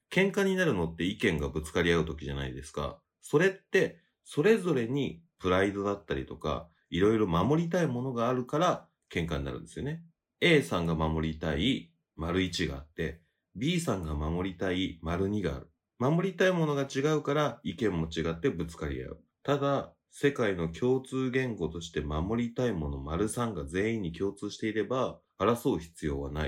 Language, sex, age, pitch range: Japanese, male, 30-49, 80-130 Hz